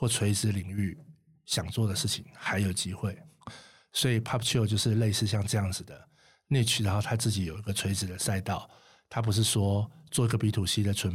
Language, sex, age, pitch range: Chinese, male, 50-69, 100-120 Hz